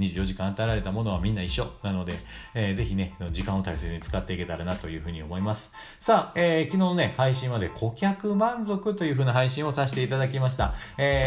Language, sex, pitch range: Japanese, male, 105-160 Hz